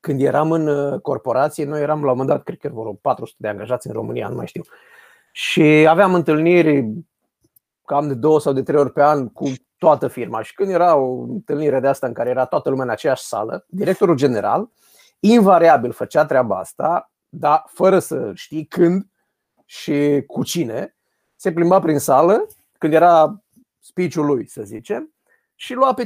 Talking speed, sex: 180 wpm, male